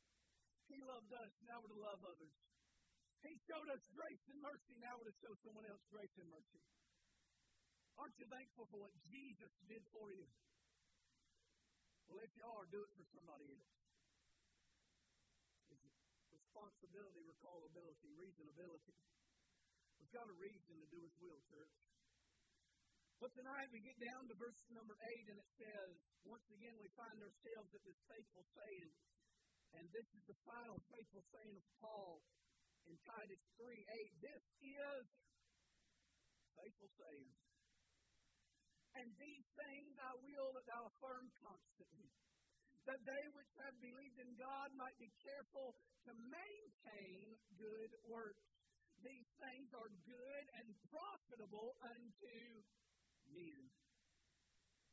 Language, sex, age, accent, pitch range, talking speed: English, male, 50-69, American, 195-255 Hz, 130 wpm